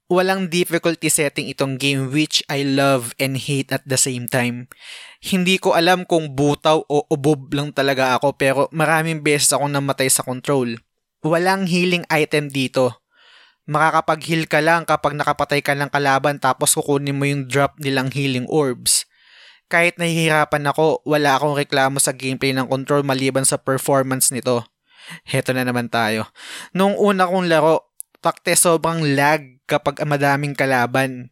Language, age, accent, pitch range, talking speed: Filipino, 20-39, native, 135-160 Hz, 150 wpm